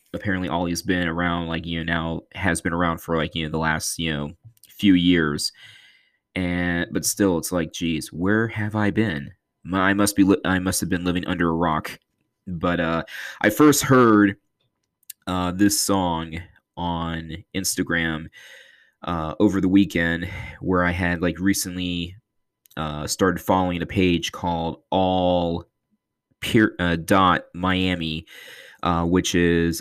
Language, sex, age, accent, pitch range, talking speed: English, male, 20-39, American, 85-100 Hz, 145 wpm